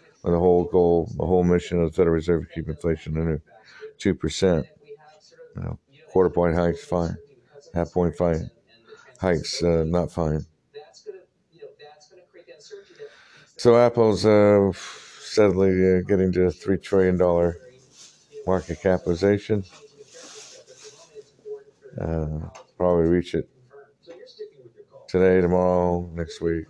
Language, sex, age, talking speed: English, male, 60-79, 95 wpm